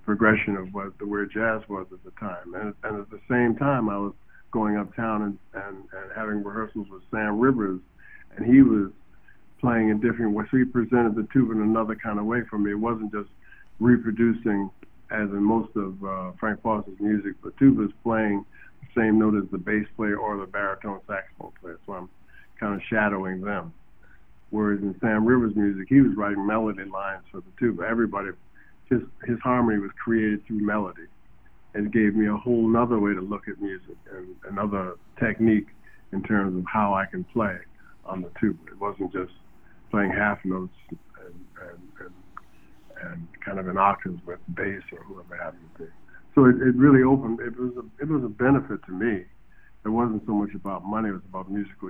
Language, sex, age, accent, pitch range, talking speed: English, male, 50-69, American, 100-115 Hz, 195 wpm